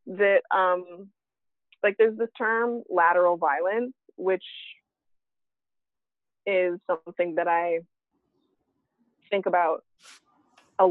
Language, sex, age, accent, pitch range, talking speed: English, female, 20-39, American, 170-230 Hz, 90 wpm